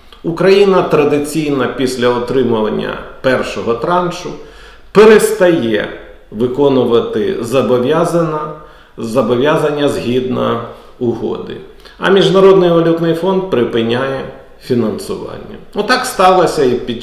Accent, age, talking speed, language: native, 50-69, 80 wpm, Ukrainian